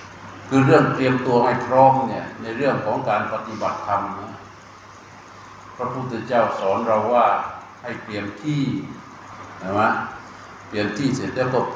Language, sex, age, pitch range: Thai, male, 60-79, 105-130 Hz